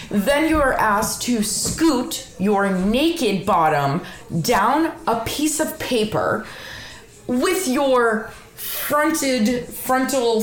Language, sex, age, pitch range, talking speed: English, female, 20-39, 200-295 Hz, 105 wpm